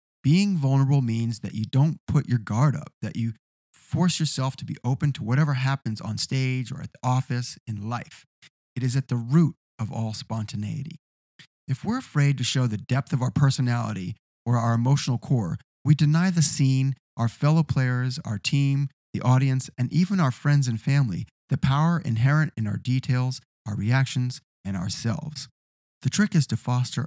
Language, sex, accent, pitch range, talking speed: English, male, American, 110-145 Hz, 180 wpm